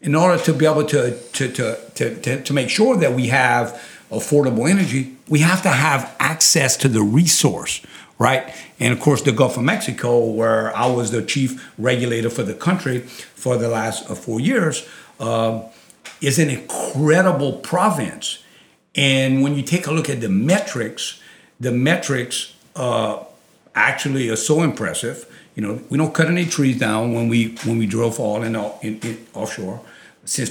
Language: English